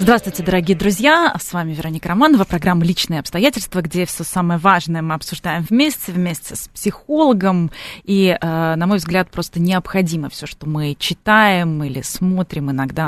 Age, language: 20-39, Russian